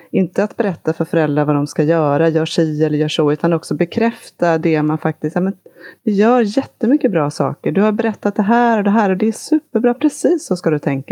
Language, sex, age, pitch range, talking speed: Swedish, female, 30-49, 155-195 Hz, 230 wpm